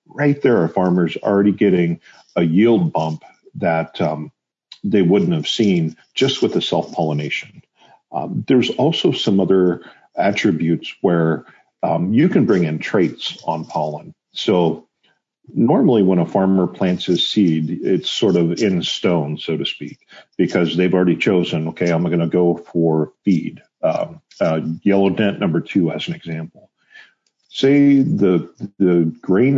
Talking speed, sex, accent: 150 wpm, male, American